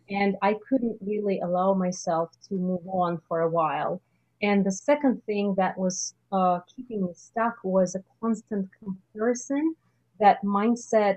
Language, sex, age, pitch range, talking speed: English, female, 30-49, 185-225 Hz, 150 wpm